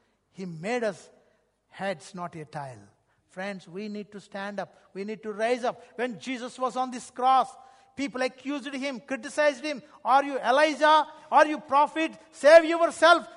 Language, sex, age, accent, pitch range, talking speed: English, male, 60-79, Indian, 160-230 Hz, 165 wpm